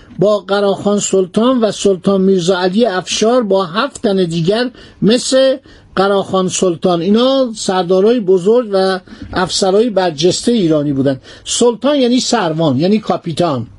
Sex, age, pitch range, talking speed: male, 50-69, 190-245 Hz, 120 wpm